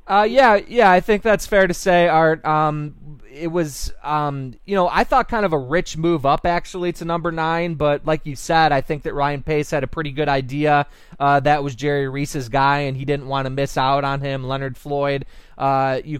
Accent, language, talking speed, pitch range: American, English, 225 wpm, 135-150 Hz